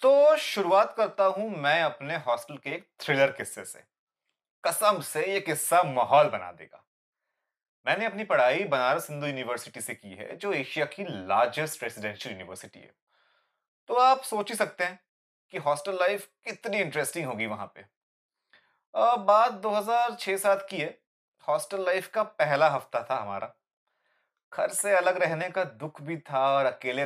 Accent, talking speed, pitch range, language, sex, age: native, 155 wpm, 150-240 Hz, Hindi, male, 30-49